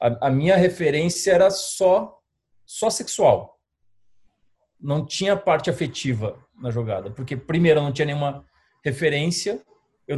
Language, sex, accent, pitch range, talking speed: Portuguese, male, Brazilian, 125-165 Hz, 125 wpm